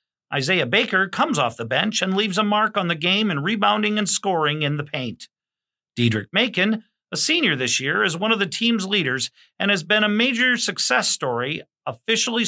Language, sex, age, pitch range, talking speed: English, male, 50-69, 155-220 Hz, 190 wpm